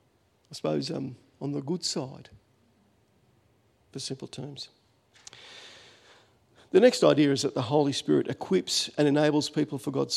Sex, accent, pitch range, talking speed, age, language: male, Australian, 115-160 Hz, 140 wpm, 50-69, English